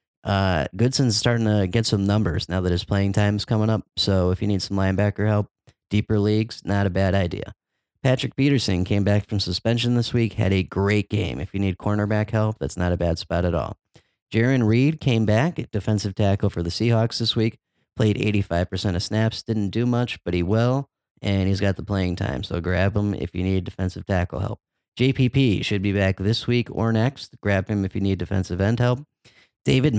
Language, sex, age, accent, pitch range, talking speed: English, male, 30-49, American, 95-110 Hz, 210 wpm